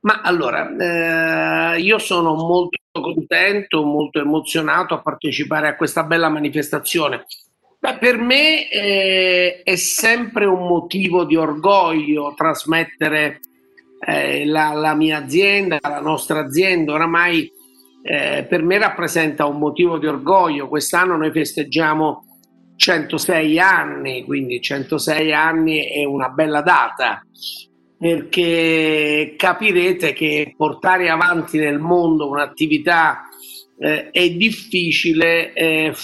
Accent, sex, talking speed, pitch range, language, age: native, male, 110 wpm, 150-180 Hz, Italian, 50-69